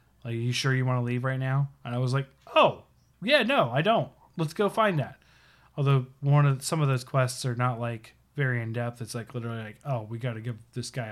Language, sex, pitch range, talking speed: English, male, 115-135 Hz, 250 wpm